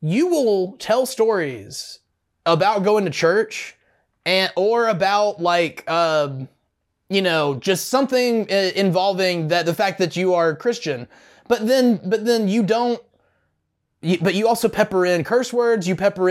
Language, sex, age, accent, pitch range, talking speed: English, male, 20-39, American, 160-210 Hz, 155 wpm